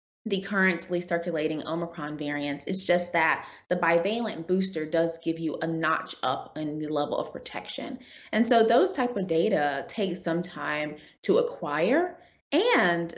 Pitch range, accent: 165-210 Hz, American